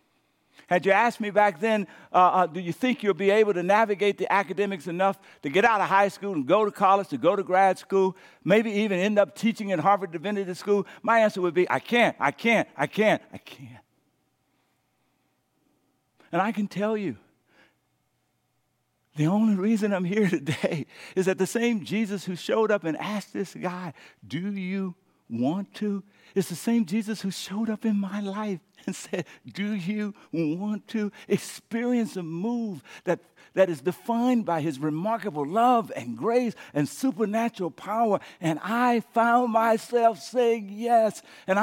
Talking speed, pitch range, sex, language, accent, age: 175 wpm, 185-230 Hz, male, English, American, 60-79